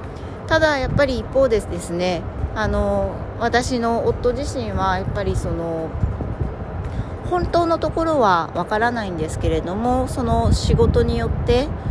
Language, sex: Japanese, female